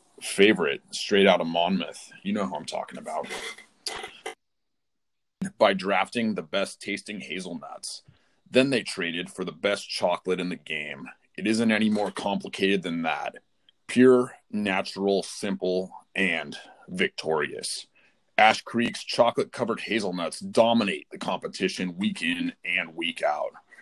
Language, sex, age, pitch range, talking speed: English, male, 30-49, 95-120 Hz, 125 wpm